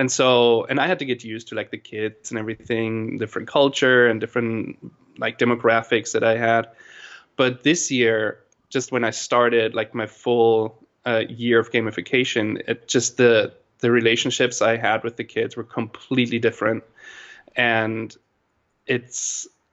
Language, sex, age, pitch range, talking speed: English, male, 20-39, 115-125 Hz, 160 wpm